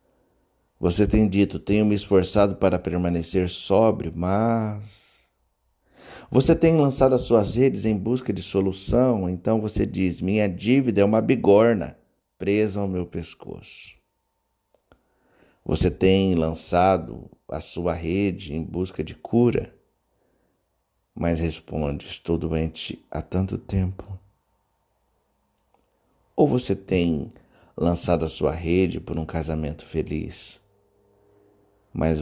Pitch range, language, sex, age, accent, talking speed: 85-105 Hz, Portuguese, male, 50-69, Brazilian, 115 wpm